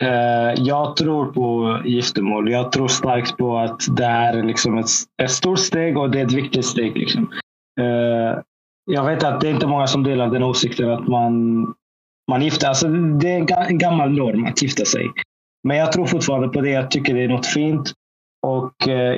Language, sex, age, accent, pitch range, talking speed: Swedish, male, 20-39, native, 120-145 Hz, 180 wpm